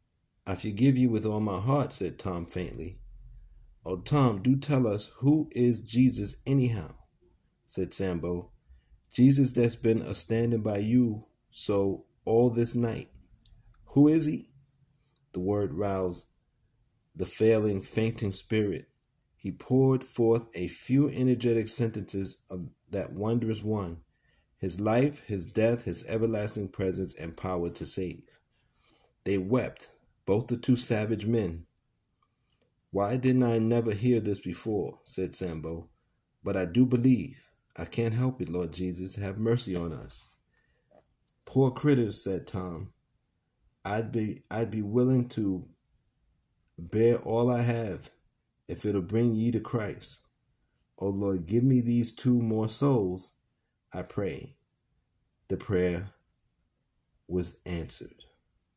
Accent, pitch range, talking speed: American, 95-125 Hz, 130 wpm